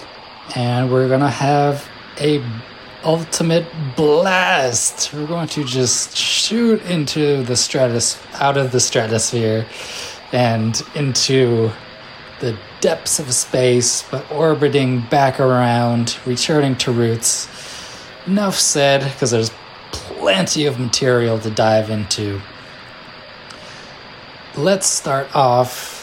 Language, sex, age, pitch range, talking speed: English, male, 20-39, 120-140 Hz, 105 wpm